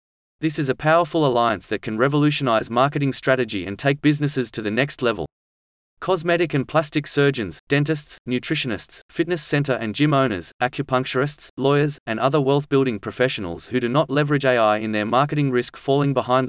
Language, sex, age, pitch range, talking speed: English, male, 30-49, 115-145 Hz, 165 wpm